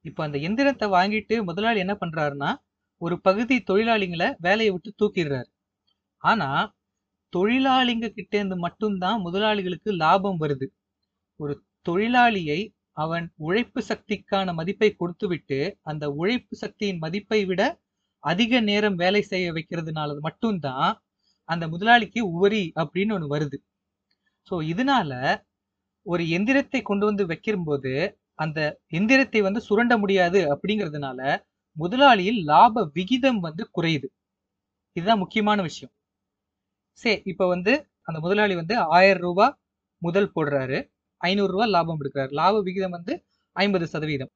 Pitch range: 150-210 Hz